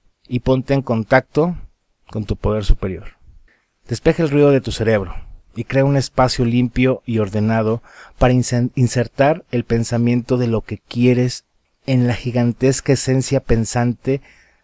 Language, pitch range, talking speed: Spanish, 120-150 Hz, 140 wpm